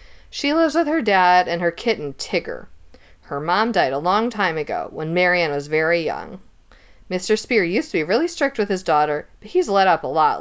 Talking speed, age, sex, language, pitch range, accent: 215 wpm, 40-59, female, English, 160-220 Hz, American